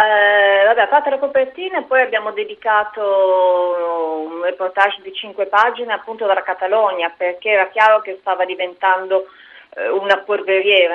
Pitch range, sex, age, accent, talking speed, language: 175-210 Hz, female, 30-49, native, 135 wpm, Italian